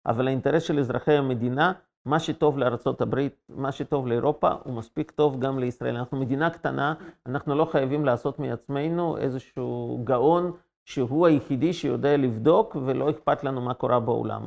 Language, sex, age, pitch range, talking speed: Hebrew, male, 50-69, 120-150 Hz, 150 wpm